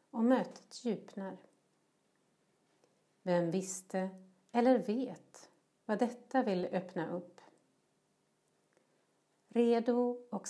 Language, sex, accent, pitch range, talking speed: Swedish, female, native, 180-225 Hz, 80 wpm